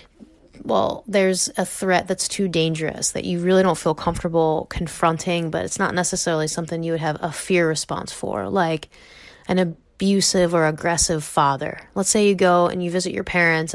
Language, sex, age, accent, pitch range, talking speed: English, female, 20-39, American, 165-195 Hz, 180 wpm